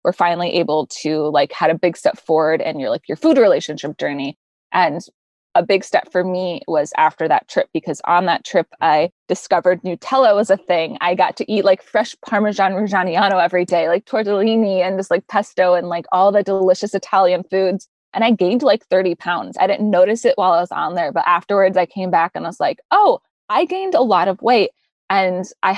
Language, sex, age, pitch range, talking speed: English, female, 20-39, 175-205 Hz, 215 wpm